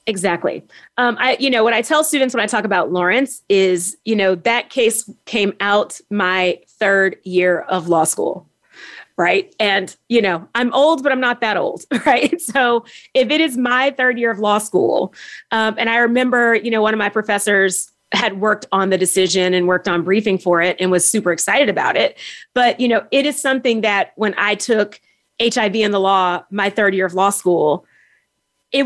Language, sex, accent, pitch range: English, female, American, 195-255 Hz